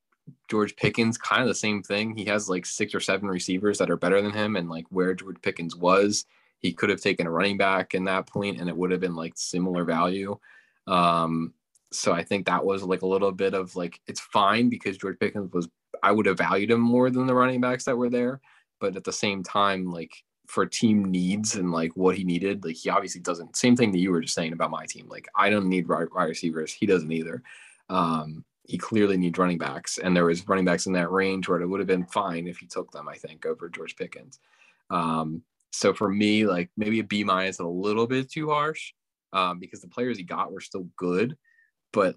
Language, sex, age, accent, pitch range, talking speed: English, male, 20-39, American, 85-105 Hz, 235 wpm